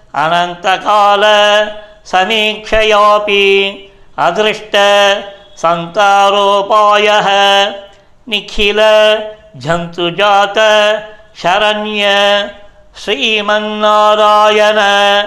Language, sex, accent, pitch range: Tamil, male, native, 200-215 Hz